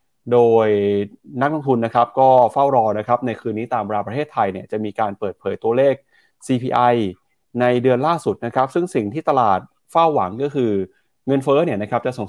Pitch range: 115-145 Hz